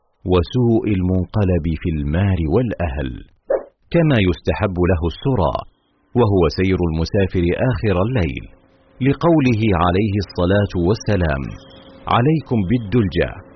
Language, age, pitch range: Arabic, 50-69, 90-120 Hz